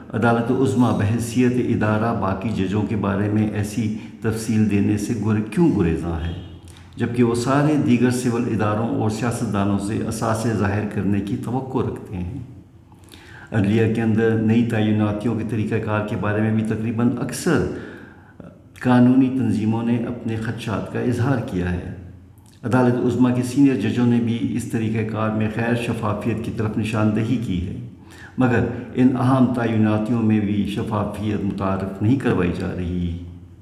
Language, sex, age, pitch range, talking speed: Urdu, male, 50-69, 100-120 Hz, 155 wpm